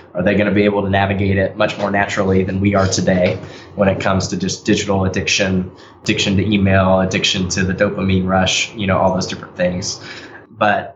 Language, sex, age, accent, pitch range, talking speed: English, male, 10-29, American, 95-105 Hz, 210 wpm